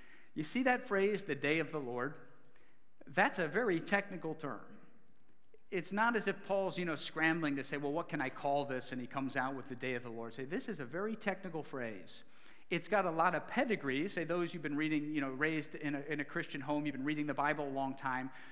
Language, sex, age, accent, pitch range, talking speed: English, male, 40-59, American, 145-195 Hz, 245 wpm